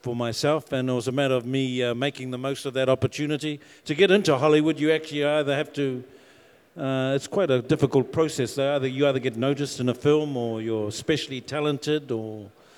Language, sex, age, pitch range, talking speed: English, male, 50-69, 135-170 Hz, 200 wpm